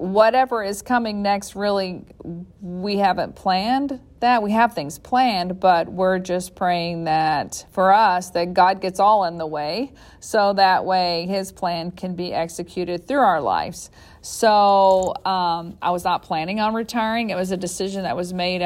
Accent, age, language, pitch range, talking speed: American, 40-59, English, 175-210 Hz, 170 wpm